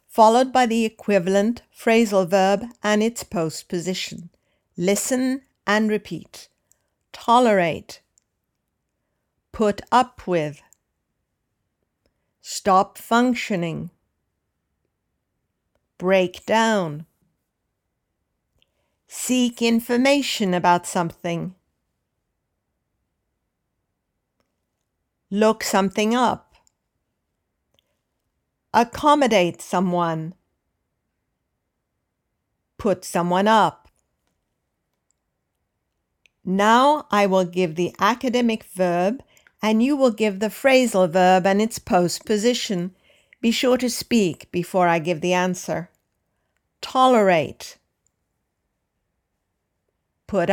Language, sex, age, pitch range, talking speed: English, female, 60-79, 175-230 Hz, 70 wpm